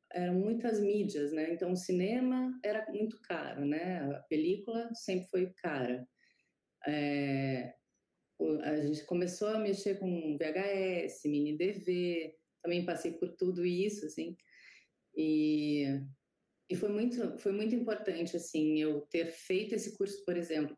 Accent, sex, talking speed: Brazilian, female, 135 wpm